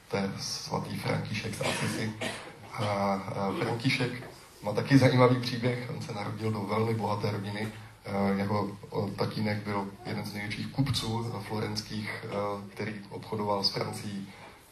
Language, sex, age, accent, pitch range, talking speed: Czech, male, 20-39, native, 105-120 Hz, 120 wpm